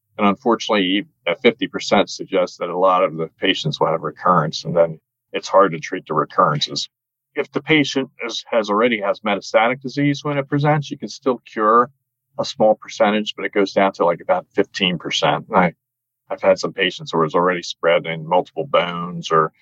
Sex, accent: male, American